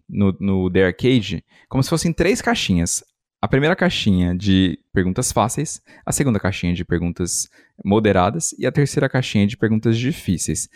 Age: 20-39